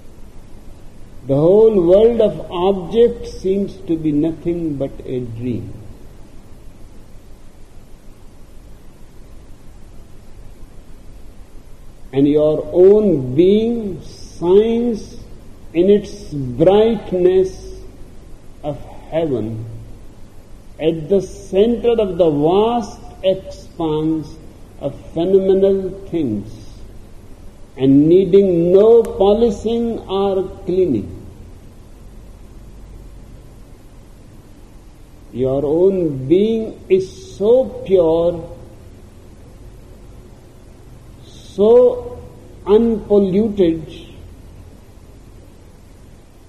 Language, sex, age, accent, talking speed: Hindi, male, 50-69, native, 60 wpm